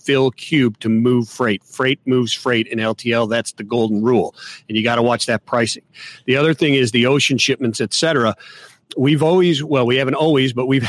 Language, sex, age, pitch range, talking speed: English, male, 40-59, 120-145 Hz, 210 wpm